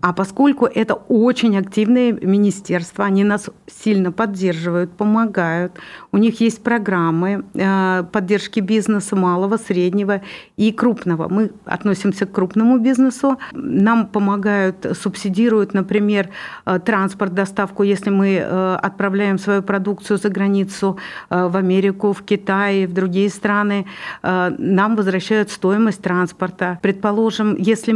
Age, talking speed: 50-69, 110 wpm